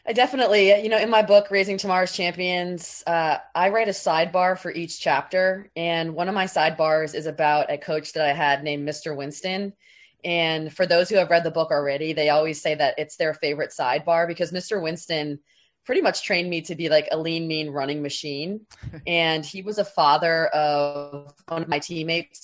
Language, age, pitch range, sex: English, 20-39, 150-180 Hz, female